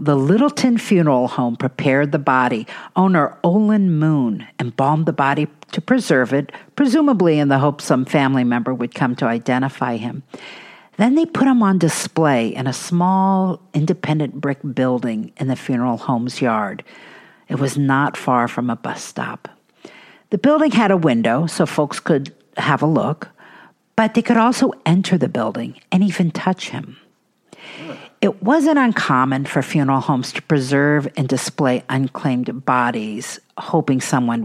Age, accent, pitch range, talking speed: 50-69, American, 130-190 Hz, 155 wpm